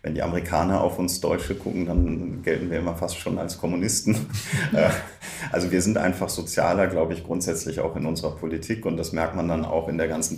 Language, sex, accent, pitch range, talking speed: German, male, German, 85-95 Hz, 210 wpm